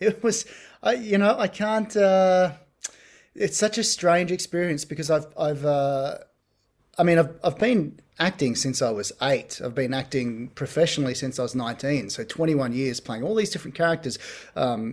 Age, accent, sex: 30-49, Australian, male